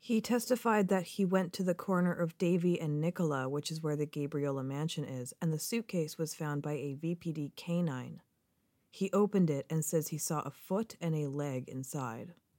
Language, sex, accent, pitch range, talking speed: English, female, American, 150-180 Hz, 195 wpm